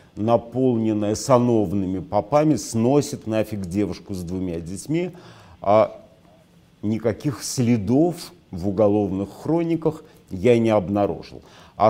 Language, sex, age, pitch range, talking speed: Russian, male, 50-69, 105-135 Hz, 90 wpm